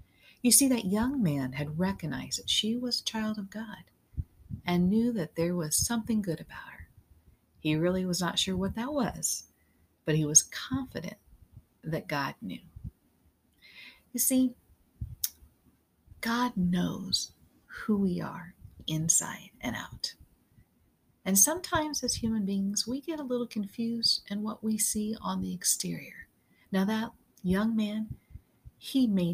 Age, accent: 50-69, American